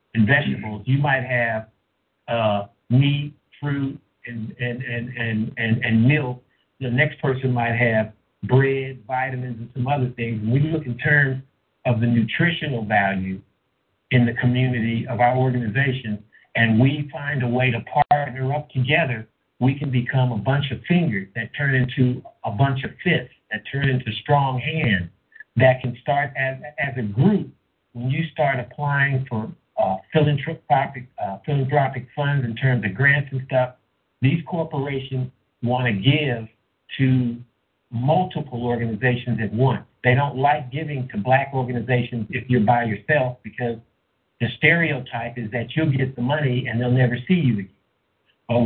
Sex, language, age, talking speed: male, English, 50-69, 160 wpm